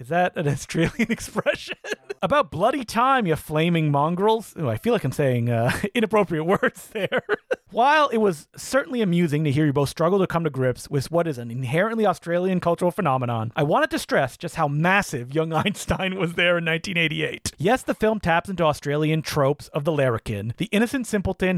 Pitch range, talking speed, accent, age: 145-205 Hz, 190 wpm, American, 30-49